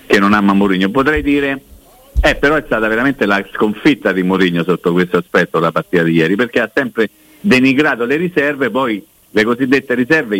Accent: native